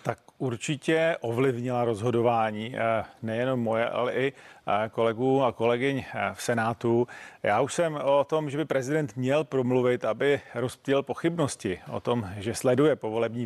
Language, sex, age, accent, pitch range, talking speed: Czech, male, 40-59, native, 120-140 Hz, 140 wpm